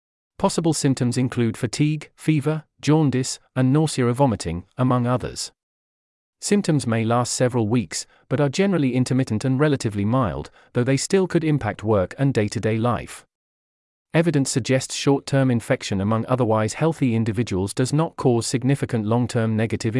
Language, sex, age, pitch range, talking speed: English, male, 40-59, 110-140 Hz, 140 wpm